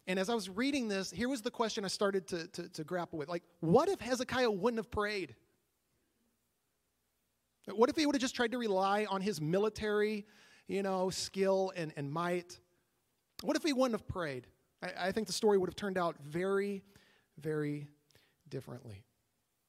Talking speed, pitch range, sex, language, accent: 185 wpm, 170-220 Hz, male, English, American